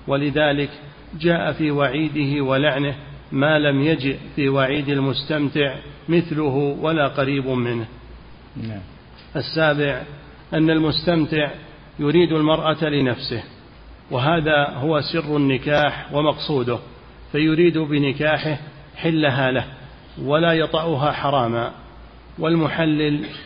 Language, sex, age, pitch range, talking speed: Arabic, male, 50-69, 140-155 Hz, 85 wpm